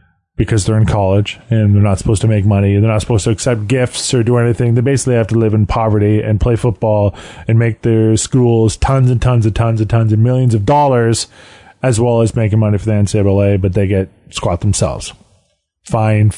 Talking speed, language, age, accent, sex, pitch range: 215 wpm, English, 20-39, American, male, 105-130 Hz